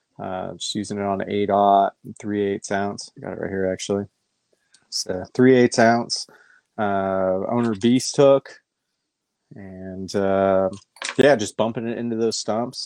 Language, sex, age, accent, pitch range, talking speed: English, male, 20-39, American, 100-120 Hz, 160 wpm